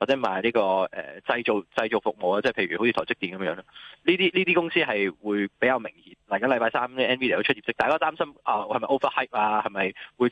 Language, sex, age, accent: Chinese, male, 20-39, native